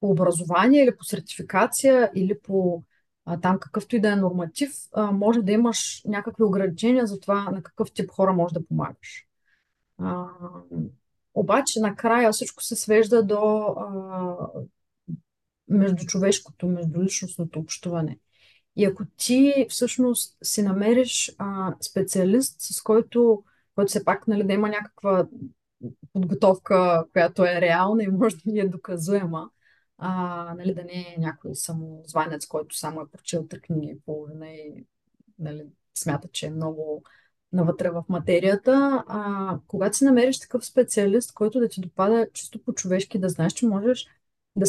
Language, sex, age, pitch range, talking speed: Bulgarian, female, 30-49, 175-230 Hz, 135 wpm